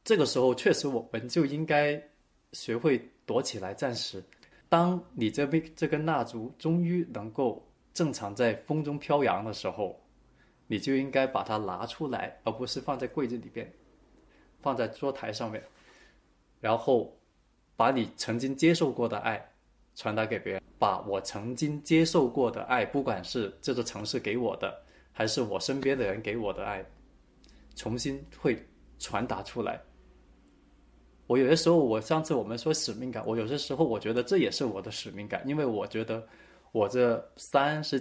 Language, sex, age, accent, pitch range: Chinese, male, 20-39, native, 115-155 Hz